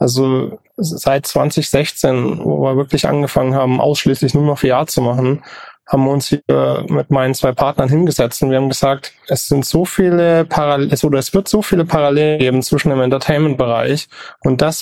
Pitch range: 130-150 Hz